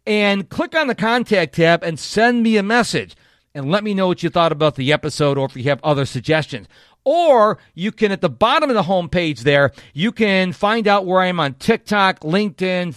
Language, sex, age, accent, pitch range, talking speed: English, male, 50-69, American, 145-205 Hz, 220 wpm